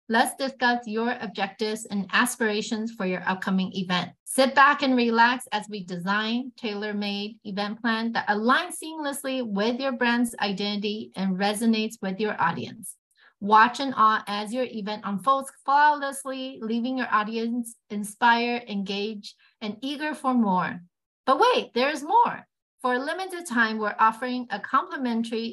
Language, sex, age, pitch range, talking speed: English, female, 40-59, 210-255 Hz, 150 wpm